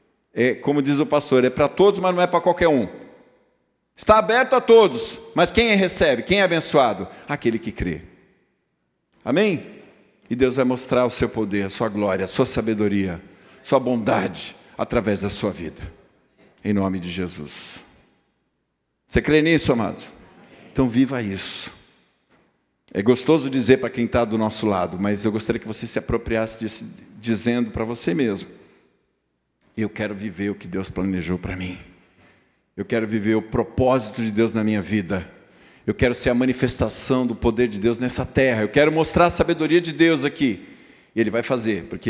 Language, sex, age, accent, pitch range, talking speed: Portuguese, male, 50-69, Brazilian, 110-165 Hz, 175 wpm